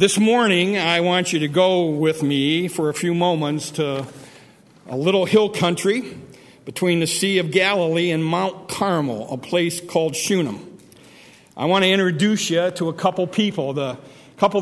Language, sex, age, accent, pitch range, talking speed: English, male, 50-69, American, 170-200 Hz, 170 wpm